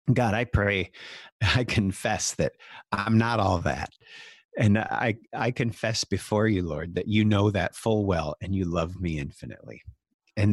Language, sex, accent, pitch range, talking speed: English, male, American, 100-120 Hz, 165 wpm